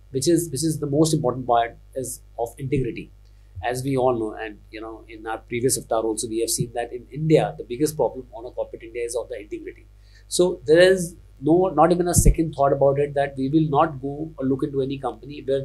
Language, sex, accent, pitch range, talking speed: English, male, Indian, 110-155 Hz, 240 wpm